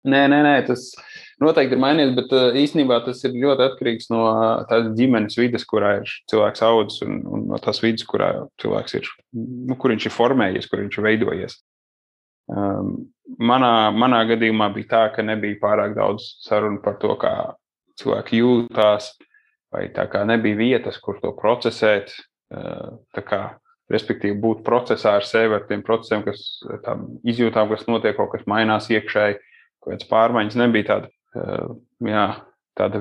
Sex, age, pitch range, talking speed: male, 20-39, 105-125 Hz, 155 wpm